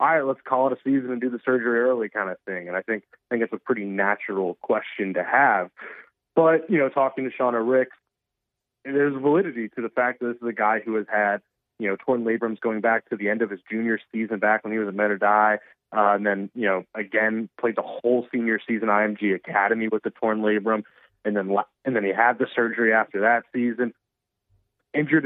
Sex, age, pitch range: male, 20-39, 110-125 Hz